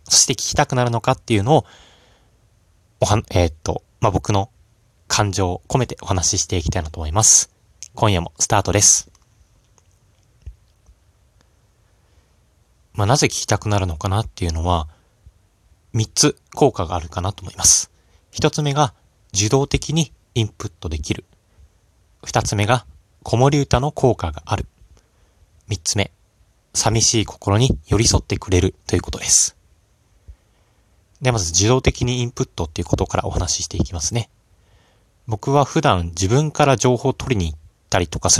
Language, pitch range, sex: Japanese, 90-115 Hz, male